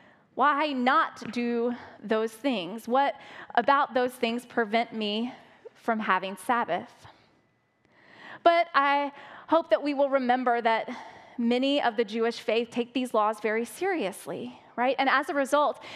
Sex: female